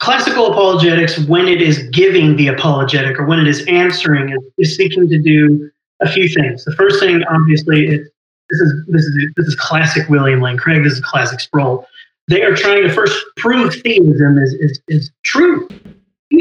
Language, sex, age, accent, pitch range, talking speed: English, male, 30-49, American, 150-195 Hz, 180 wpm